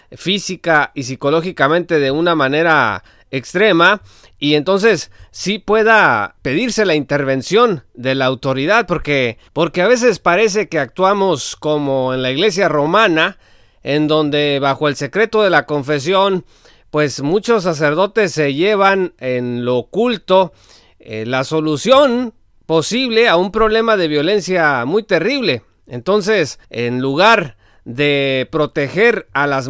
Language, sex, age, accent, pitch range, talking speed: Spanish, male, 40-59, Mexican, 145-200 Hz, 125 wpm